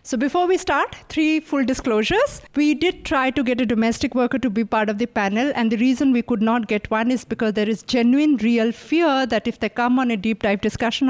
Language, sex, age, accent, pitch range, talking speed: English, female, 50-69, Indian, 220-265 Hz, 245 wpm